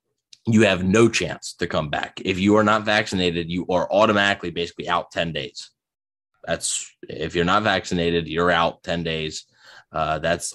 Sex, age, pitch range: male, 20-39, 85-105 Hz